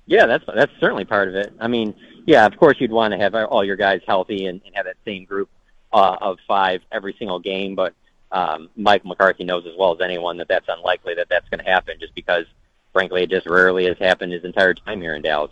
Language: English